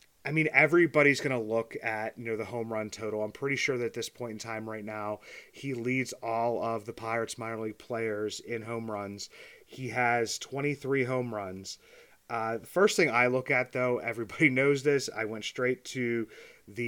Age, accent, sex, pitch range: 30-49, American, male, 110-125 Hz